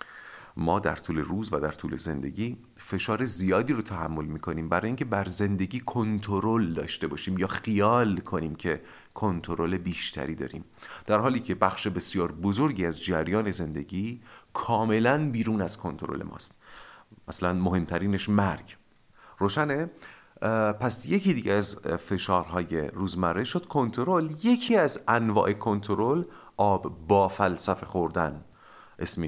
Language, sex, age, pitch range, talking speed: Persian, male, 40-59, 85-110 Hz, 130 wpm